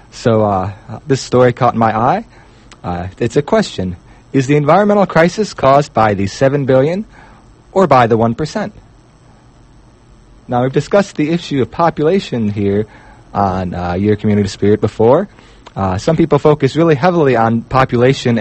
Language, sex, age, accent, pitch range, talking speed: English, male, 30-49, American, 110-150 Hz, 150 wpm